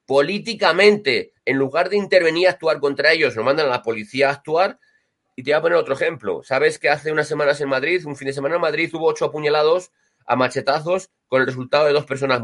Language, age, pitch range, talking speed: Spanish, 30-49, 135-180 Hz, 225 wpm